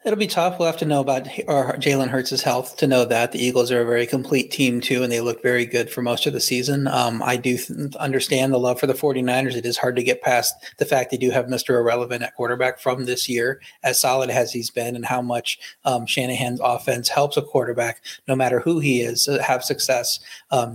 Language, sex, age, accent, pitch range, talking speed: English, male, 30-49, American, 125-140 Hz, 235 wpm